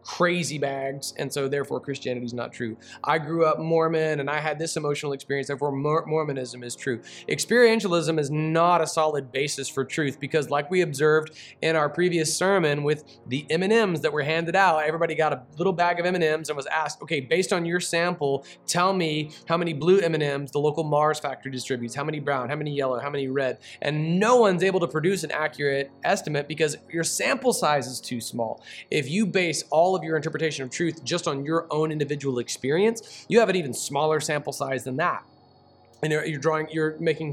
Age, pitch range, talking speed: 20-39, 135-160 Hz, 205 wpm